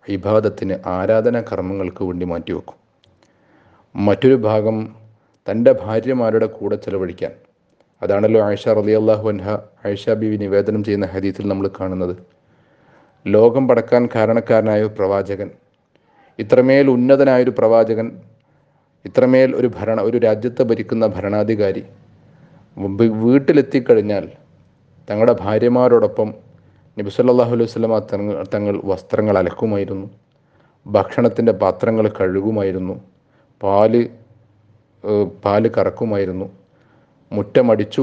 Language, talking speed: Malayalam, 80 wpm